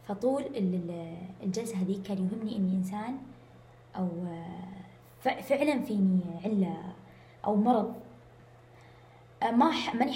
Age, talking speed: 20-39, 90 wpm